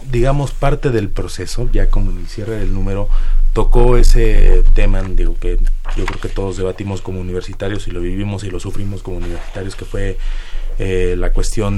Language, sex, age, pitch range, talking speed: Spanish, male, 30-49, 95-115 Hz, 180 wpm